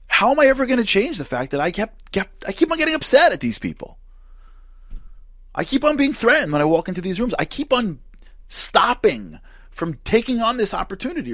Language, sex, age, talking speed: English, male, 30-49, 210 wpm